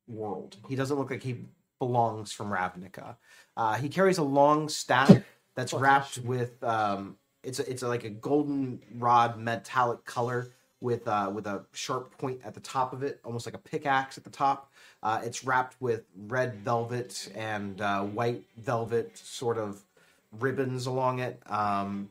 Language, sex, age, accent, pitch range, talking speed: English, male, 30-49, American, 110-130 Hz, 170 wpm